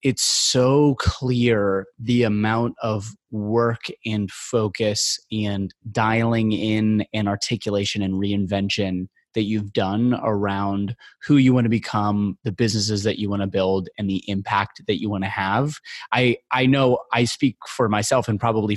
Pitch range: 100-120 Hz